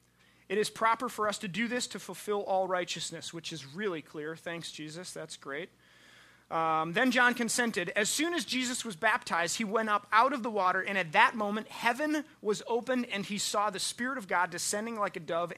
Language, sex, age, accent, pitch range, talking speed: English, male, 30-49, American, 160-230 Hz, 210 wpm